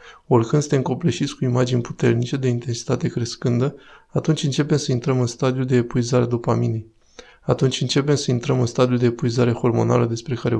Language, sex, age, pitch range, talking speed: Romanian, male, 20-39, 120-140 Hz, 165 wpm